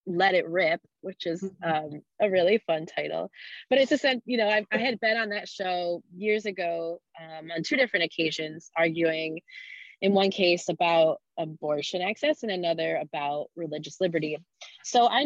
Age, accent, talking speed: 20-39, American, 170 wpm